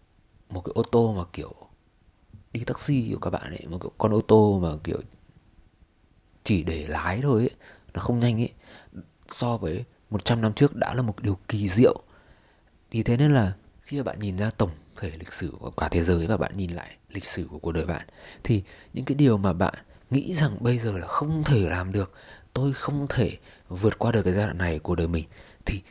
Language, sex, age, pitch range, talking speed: Vietnamese, male, 20-39, 85-110 Hz, 220 wpm